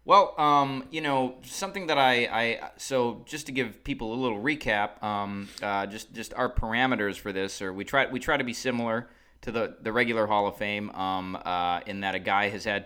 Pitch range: 105-140 Hz